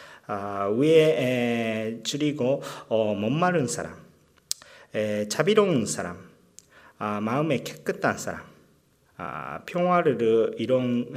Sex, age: male, 40-59